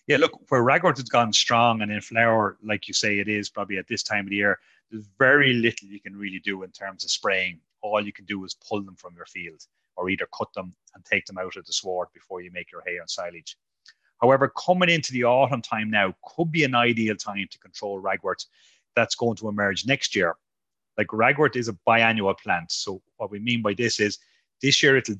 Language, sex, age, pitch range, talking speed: English, male, 30-49, 100-120 Hz, 235 wpm